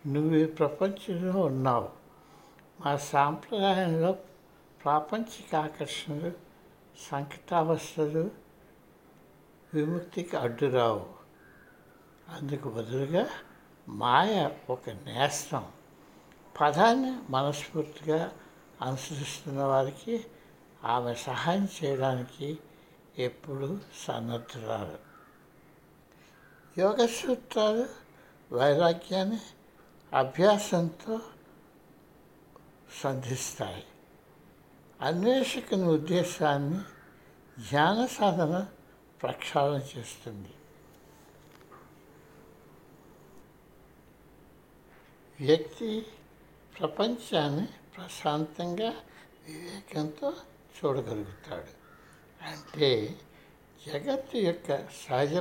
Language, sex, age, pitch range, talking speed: Telugu, male, 60-79, 140-190 Hz, 50 wpm